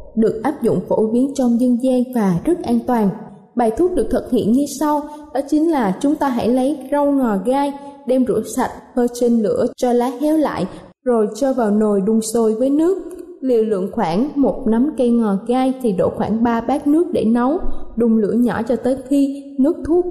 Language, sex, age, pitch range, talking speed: Vietnamese, female, 20-39, 220-285 Hz, 210 wpm